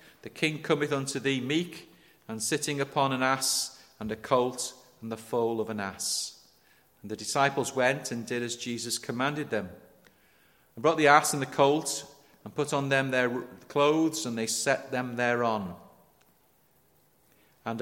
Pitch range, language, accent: 110-140 Hz, English, British